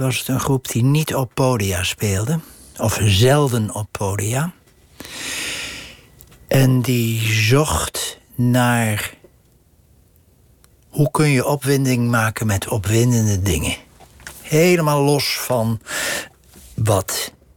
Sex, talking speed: male, 100 wpm